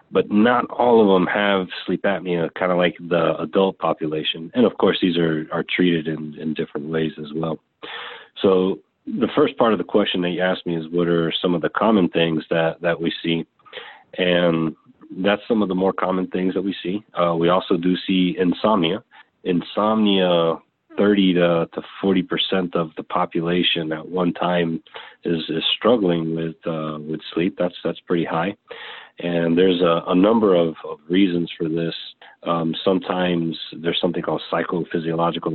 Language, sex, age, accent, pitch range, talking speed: English, male, 40-59, American, 80-90 Hz, 180 wpm